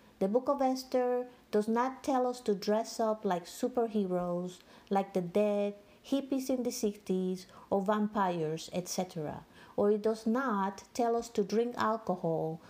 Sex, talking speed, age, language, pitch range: female, 150 wpm, 50-69, English, 195-240 Hz